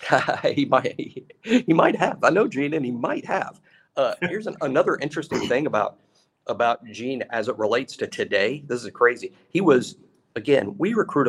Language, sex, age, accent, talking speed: English, male, 50-69, American, 180 wpm